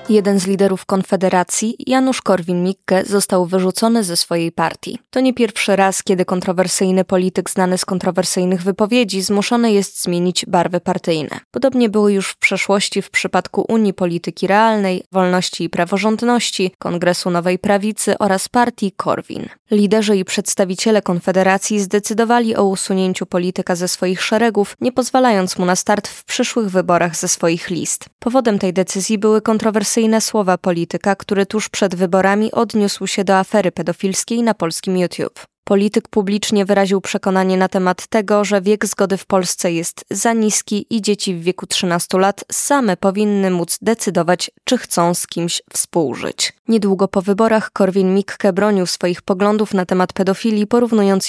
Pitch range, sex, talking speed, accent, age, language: 185-215 Hz, female, 150 wpm, native, 20-39, Polish